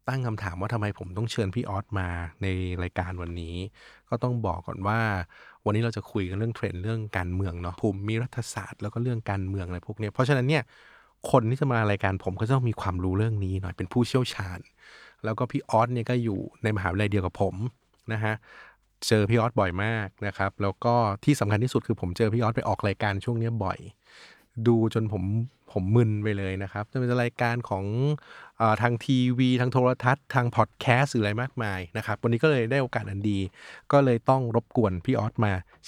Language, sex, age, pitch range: Thai, male, 20-39, 100-120 Hz